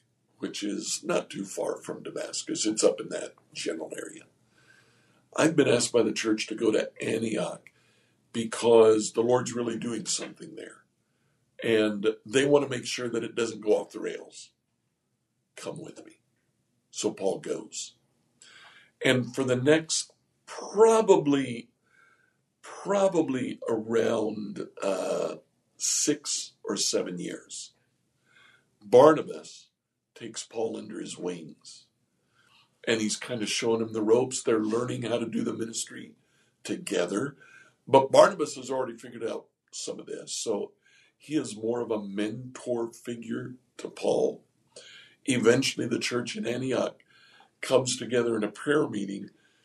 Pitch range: 115-145 Hz